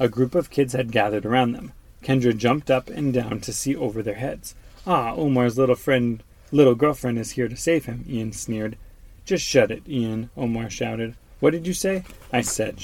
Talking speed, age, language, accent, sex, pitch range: 200 wpm, 30-49, English, American, male, 105-135 Hz